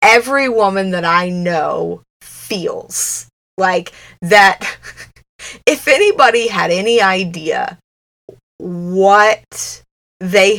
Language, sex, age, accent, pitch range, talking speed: English, female, 20-39, American, 180-225 Hz, 85 wpm